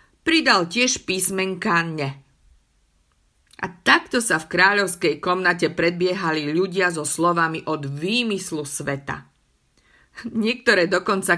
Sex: female